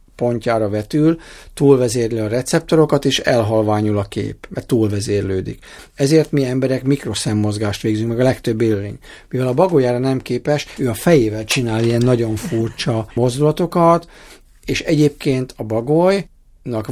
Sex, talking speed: male, 130 wpm